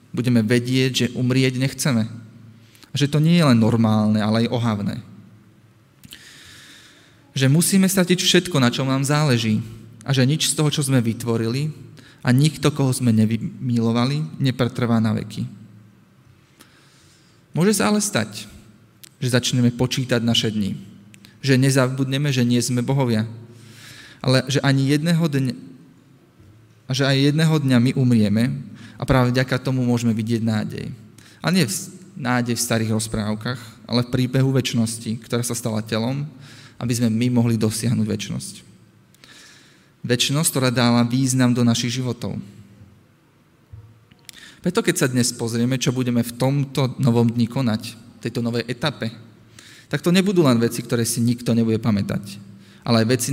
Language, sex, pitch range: Slovak, male, 115-135 Hz